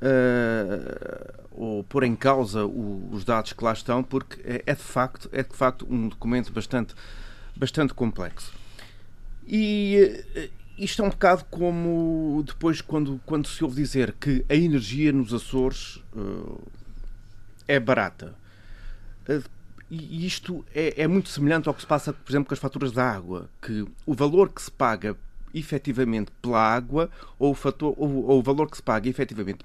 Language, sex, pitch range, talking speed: Portuguese, male, 105-150 Hz, 160 wpm